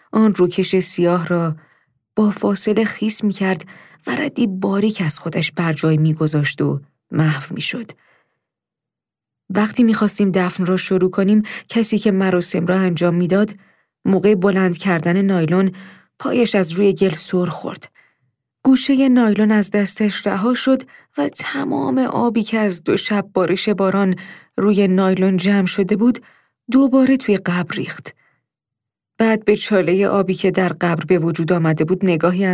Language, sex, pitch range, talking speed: Persian, female, 175-215 Hz, 140 wpm